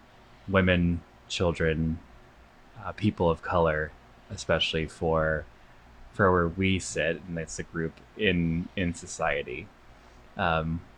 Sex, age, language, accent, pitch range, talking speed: male, 20-39, English, American, 85-100 Hz, 110 wpm